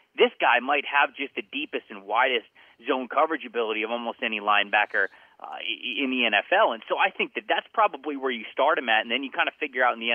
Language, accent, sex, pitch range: English, American, male, 115-160 Hz